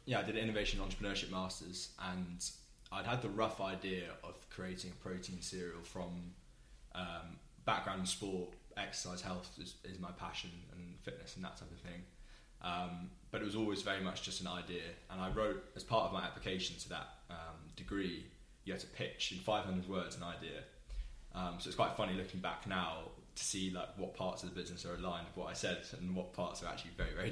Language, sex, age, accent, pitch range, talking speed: English, male, 20-39, British, 90-95 Hz, 210 wpm